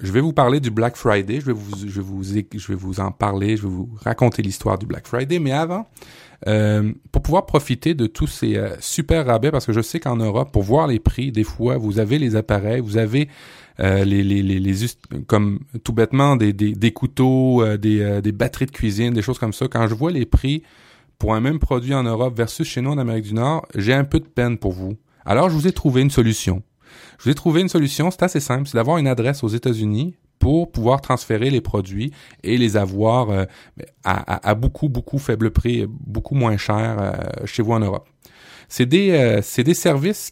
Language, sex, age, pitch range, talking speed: French, male, 30-49, 110-140 Hz, 230 wpm